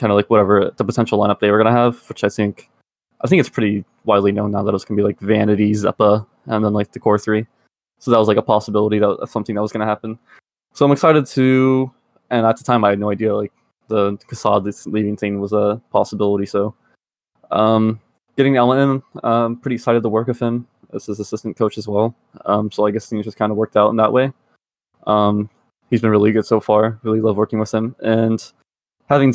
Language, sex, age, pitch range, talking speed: English, male, 20-39, 105-120 Hz, 230 wpm